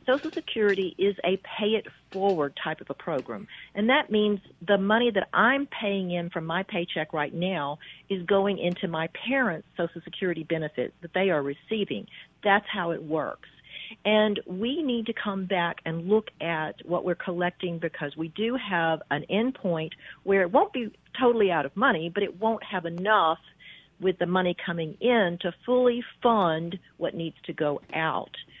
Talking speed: 175 wpm